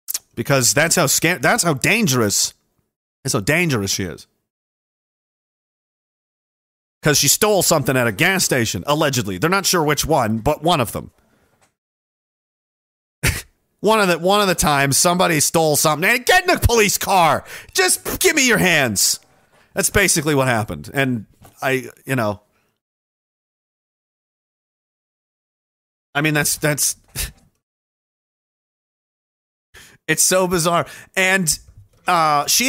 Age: 40-59